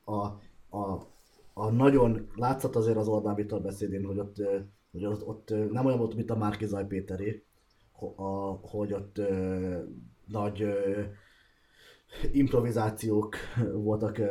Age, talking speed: 20-39, 115 wpm